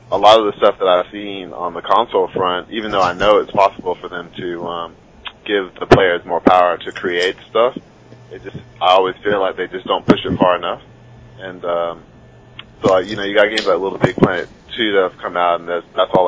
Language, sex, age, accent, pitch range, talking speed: English, male, 30-49, American, 85-100 Hz, 235 wpm